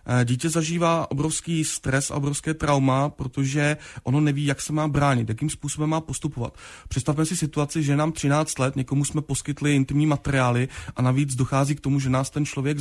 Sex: male